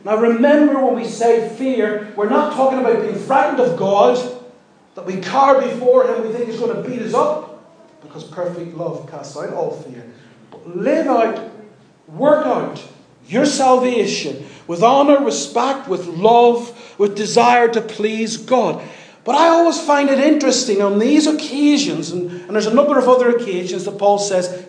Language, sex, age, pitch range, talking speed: English, male, 40-59, 210-265 Hz, 175 wpm